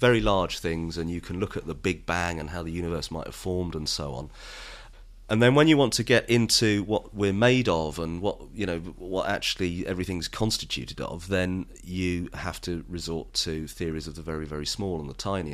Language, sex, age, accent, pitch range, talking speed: English, male, 30-49, British, 85-105 Hz, 220 wpm